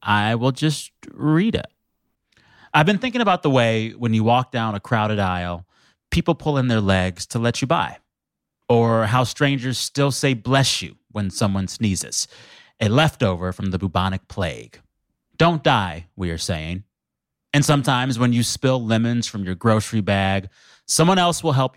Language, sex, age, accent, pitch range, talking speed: English, male, 30-49, American, 105-135 Hz, 170 wpm